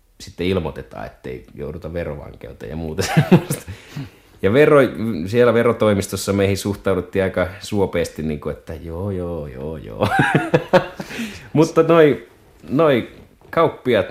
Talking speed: 115 wpm